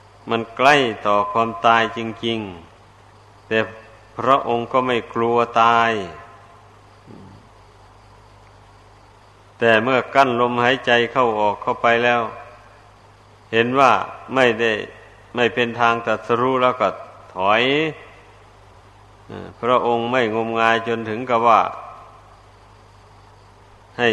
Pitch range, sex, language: 100-120 Hz, male, Thai